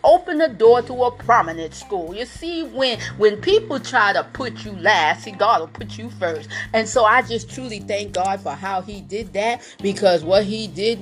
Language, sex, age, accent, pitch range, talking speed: English, female, 40-59, American, 195-245 Hz, 210 wpm